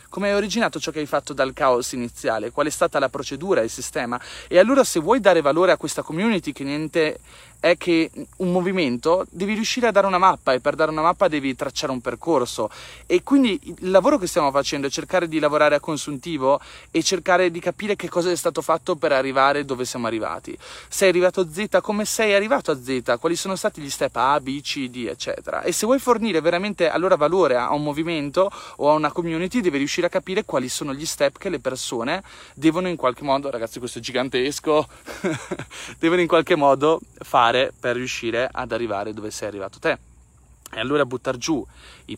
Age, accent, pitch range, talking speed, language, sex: 30-49, native, 130-190 Hz, 205 wpm, Italian, male